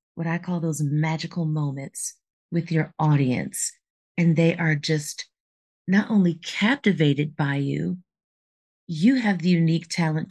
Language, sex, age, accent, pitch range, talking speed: English, female, 40-59, American, 155-195 Hz, 135 wpm